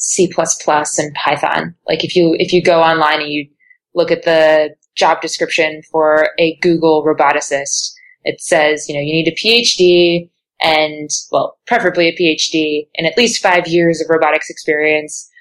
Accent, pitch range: American, 155-185 Hz